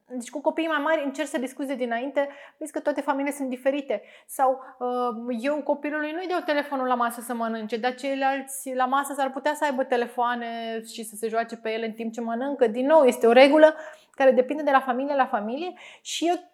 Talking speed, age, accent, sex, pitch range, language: 205 wpm, 20-39, native, female, 240-290 Hz, Romanian